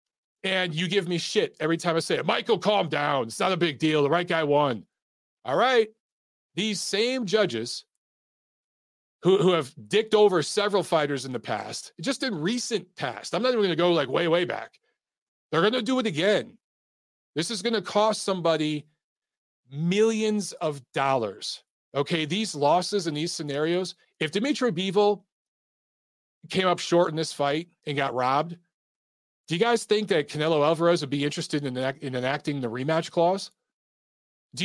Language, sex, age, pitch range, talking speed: English, male, 40-59, 145-200 Hz, 175 wpm